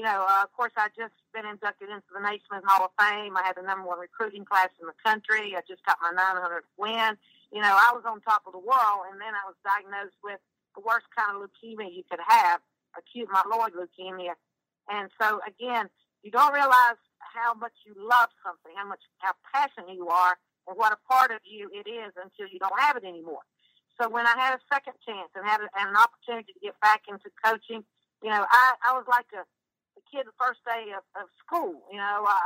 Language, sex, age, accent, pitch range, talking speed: English, female, 50-69, American, 195-230 Hz, 220 wpm